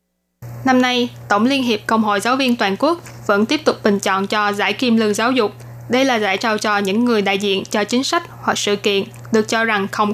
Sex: female